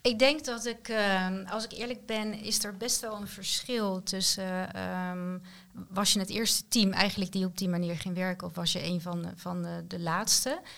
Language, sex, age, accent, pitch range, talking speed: Dutch, female, 40-59, Dutch, 185-215 Hz, 225 wpm